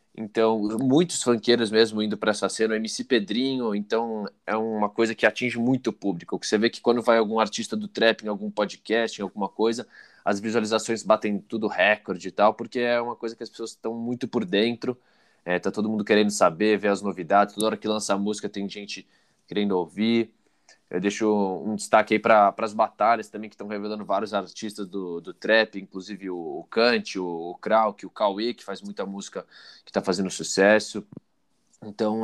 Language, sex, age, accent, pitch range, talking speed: Portuguese, male, 20-39, Brazilian, 100-110 Hz, 200 wpm